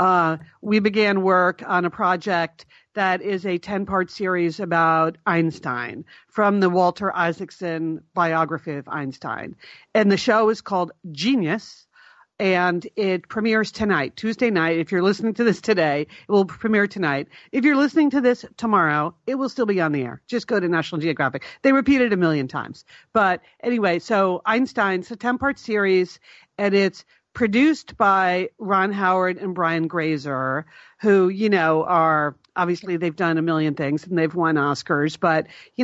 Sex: female